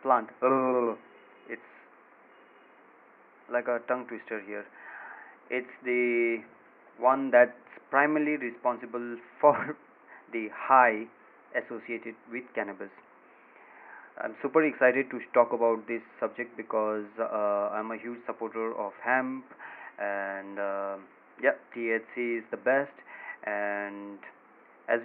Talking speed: 105 wpm